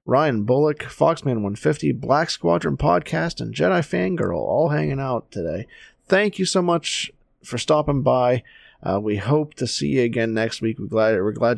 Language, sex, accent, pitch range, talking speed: English, male, American, 105-130 Hz, 190 wpm